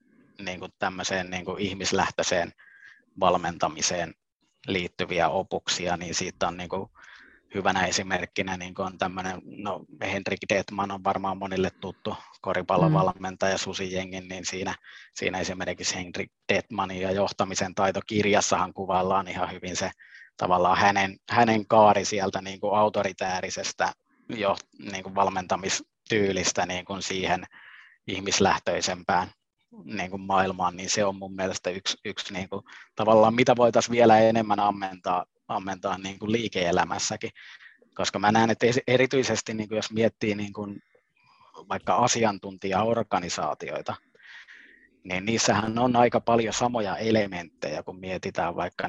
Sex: male